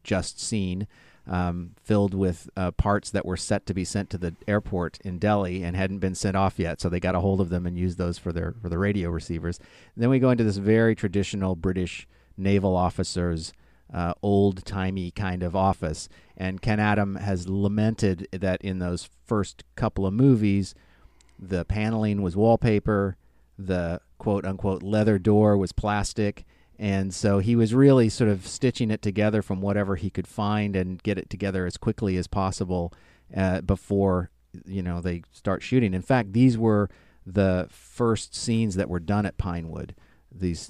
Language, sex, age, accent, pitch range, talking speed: English, male, 40-59, American, 85-100 Hz, 180 wpm